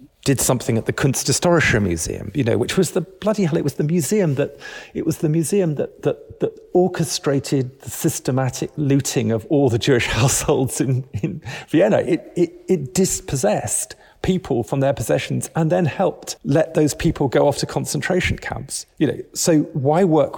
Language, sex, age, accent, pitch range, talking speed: English, male, 40-59, British, 130-165 Hz, 175 wpm